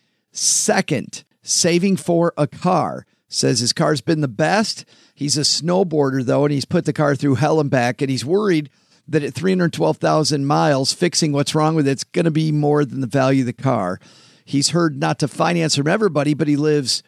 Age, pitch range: 50-69, 135-160 Hz